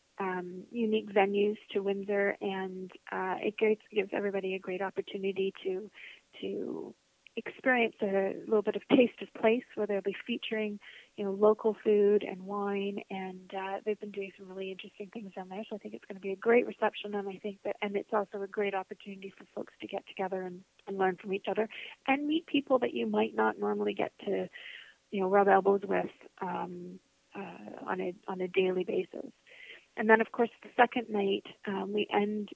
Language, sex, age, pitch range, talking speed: English, female, 30-49, 190-215 Hz, 200 wpm